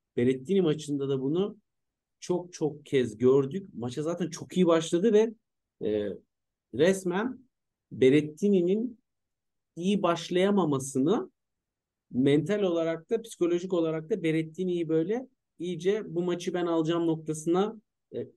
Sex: male